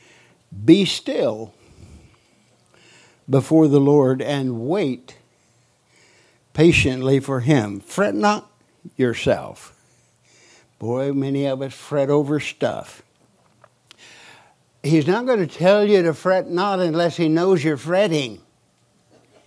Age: 60-79